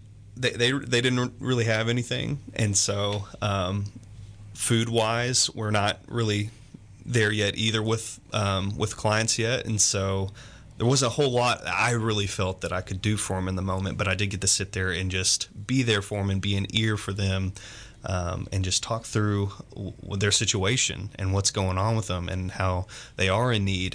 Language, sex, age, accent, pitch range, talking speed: English, male, 20-39, American, 95-110 Hz, 200 wpm